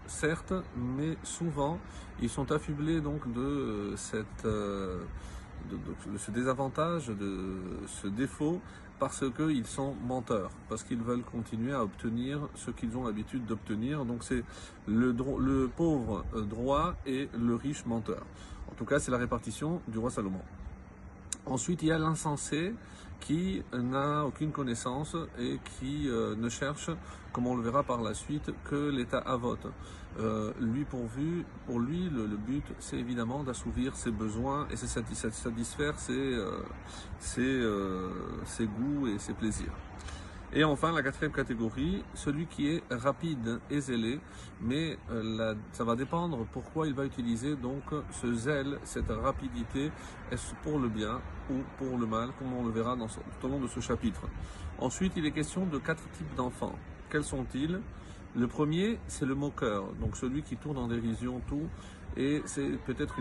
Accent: French